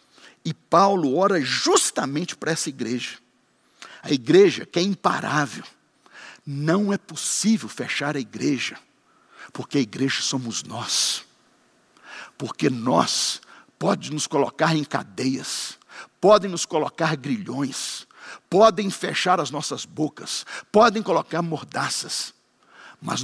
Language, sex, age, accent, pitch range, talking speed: Portuguese, male, 60-79, Brazilian, 145-220 Hz, 110 wpm